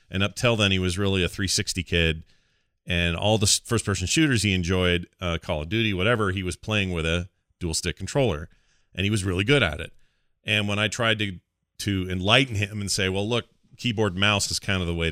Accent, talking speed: American, 220 wpm